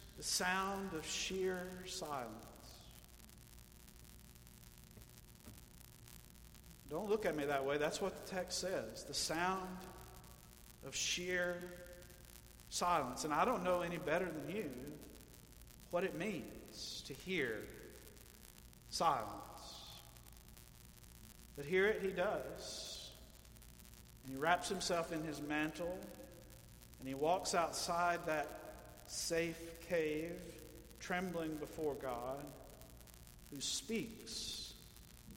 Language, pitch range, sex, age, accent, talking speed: English, 135-180 Hz, male, 50-69, American, 100 wpm